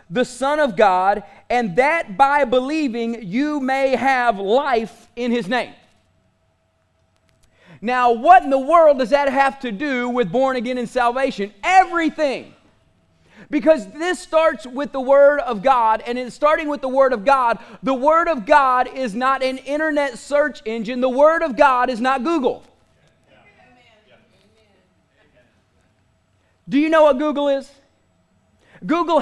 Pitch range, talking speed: 230-280 Hz, 145 wpm